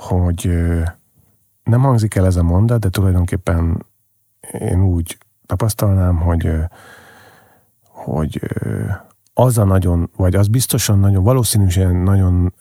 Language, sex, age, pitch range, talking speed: Hungarian, male, 40-59, 90-110 Hz, 125 wpm